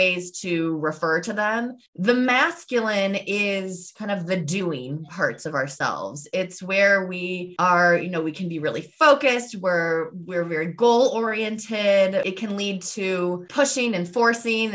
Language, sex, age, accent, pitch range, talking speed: English, female, 20-39, American, 165-205 Hz, 155 wpm